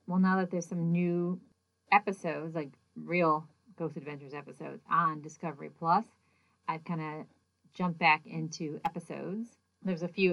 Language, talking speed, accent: English, 145 wpm, American